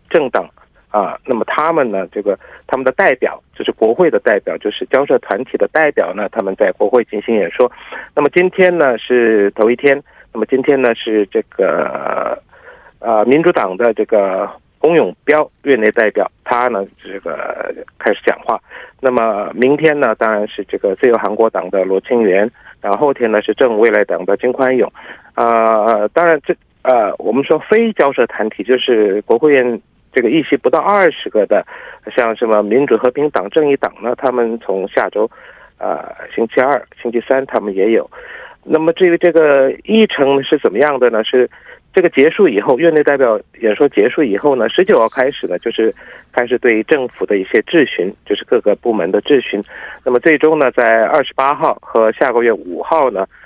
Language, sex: Korean, male